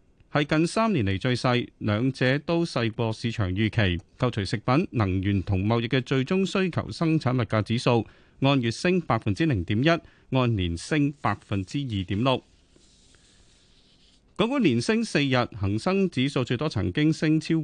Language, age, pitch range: Chinese, 30-49, 110-160 Hz